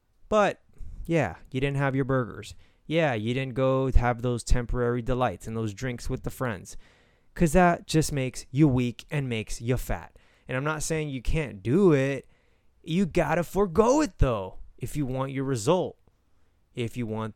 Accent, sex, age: American, male, 20-39